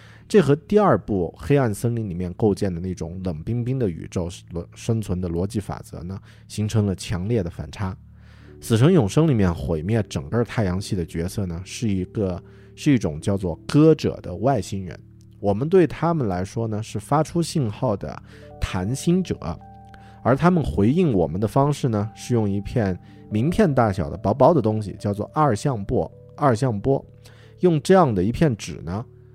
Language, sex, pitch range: Chinese, male, 95-125 Hz